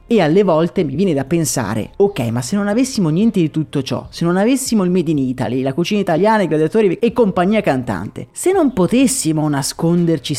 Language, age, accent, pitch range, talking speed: Italian, 30-49, native, 135-205 Hz, 200 wpm